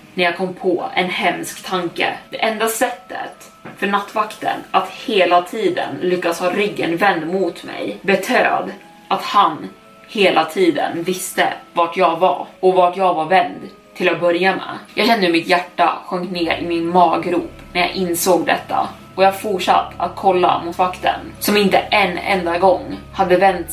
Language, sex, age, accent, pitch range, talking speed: Swedish, female, 20-39, native, 175-195 Hz, 165 wpm